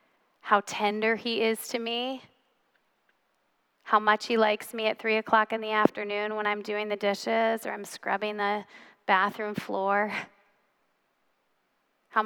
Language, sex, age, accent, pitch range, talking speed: English, female, 30-49, American, 205-225 Hz, 140 wpm